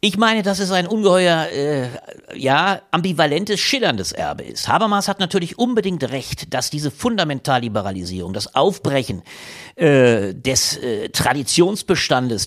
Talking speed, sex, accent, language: 125 wpm, male, German, German